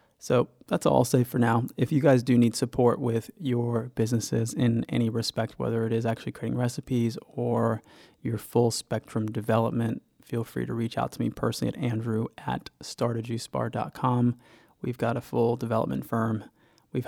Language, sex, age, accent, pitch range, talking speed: English, male, 20-39, American, 110-120 Hz, 170 wpm